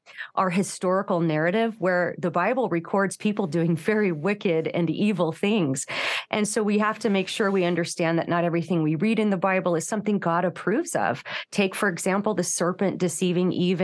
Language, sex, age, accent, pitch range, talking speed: English, female, 30-49, American, 175-210 Hz, 185 wpm